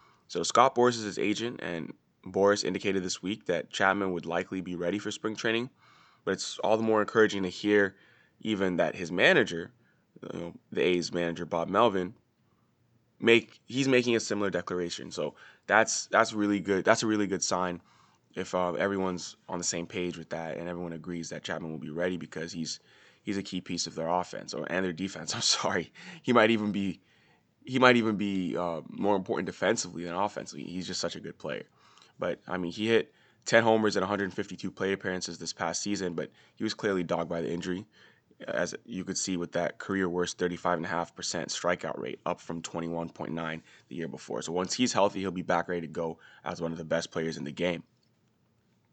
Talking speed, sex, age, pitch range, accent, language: 200 wpm, male, 20-39, 85-105 Hz, American, English